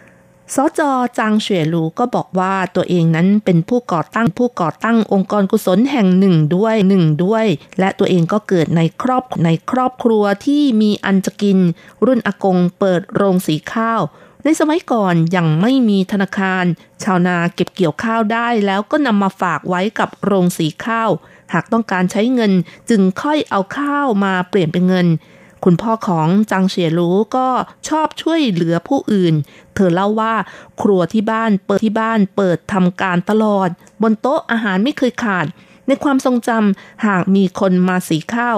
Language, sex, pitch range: Thai, female, 180-230 Hz